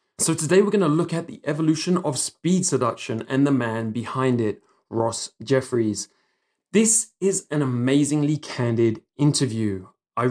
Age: 20-39